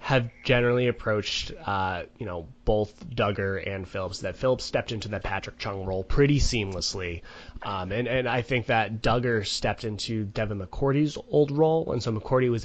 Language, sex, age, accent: English, male, 20-39, American